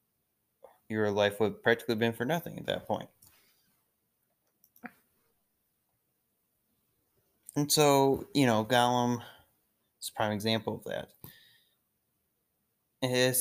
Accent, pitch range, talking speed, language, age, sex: American, 105-115 Hz, 105 wpm, English, 20-39, male